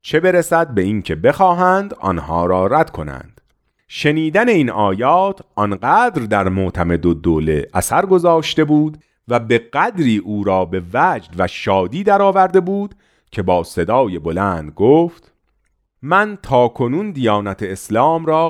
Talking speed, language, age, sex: 135 wpm, Persian, 40-59, male